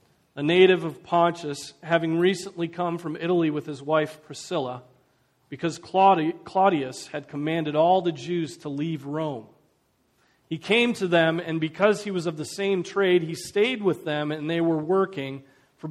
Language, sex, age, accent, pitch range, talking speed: English, male, 40-59, American, 140-175 Hz, 165 wpm